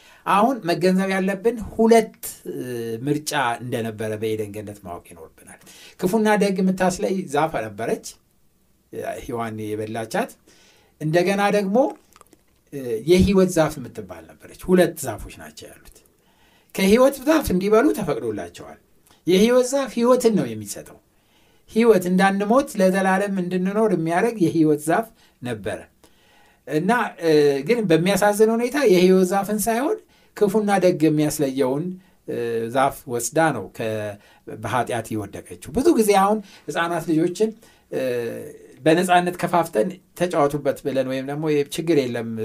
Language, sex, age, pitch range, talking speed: Amharic, male, 60-79, 135-210 Hz, 85 wpm